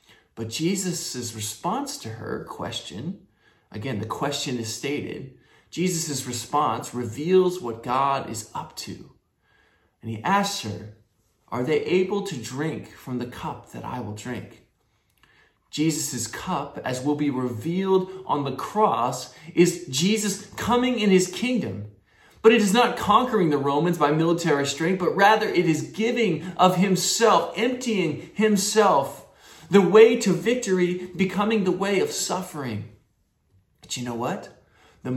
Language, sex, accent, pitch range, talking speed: English, male, American, 130-200 Hz, 140 wpm